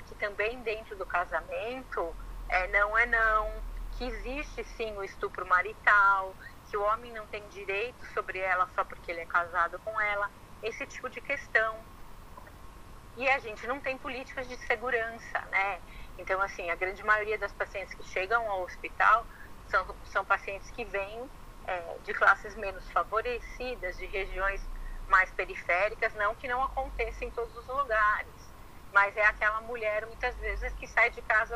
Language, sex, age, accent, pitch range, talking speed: Portuguese, female, 30-49, Brazilian, 200-250 Hz, 160 wpm